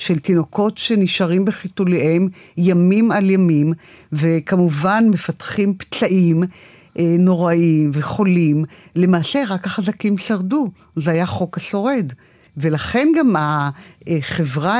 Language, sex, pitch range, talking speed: Hebrew, female, 165-205 Hz, 95 wpm